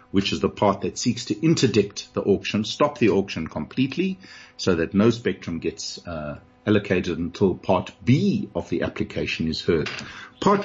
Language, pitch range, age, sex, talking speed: English, 90-125 Hz, 50-69, male, 170 wpm